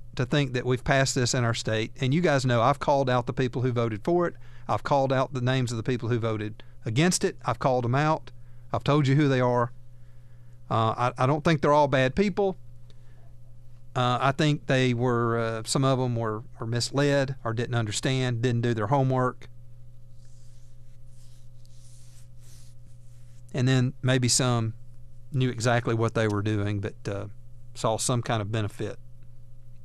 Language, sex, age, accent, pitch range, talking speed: English, male, 40-59, American, 120-130 Hz, 180 wpm